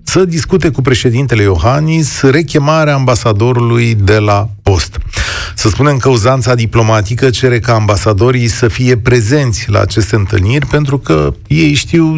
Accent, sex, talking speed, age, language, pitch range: native, male, 140 wpm, 40-59, Romanian, 105-150 Hz